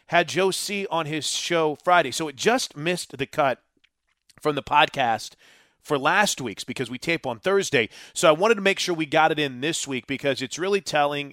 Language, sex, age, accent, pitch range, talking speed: English, male, 30-49, American, 130-165 Hz, 210 wpm